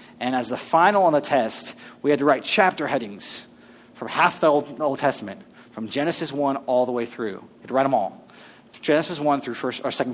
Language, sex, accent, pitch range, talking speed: English, male, American, 125-180 Hz, 230 wpm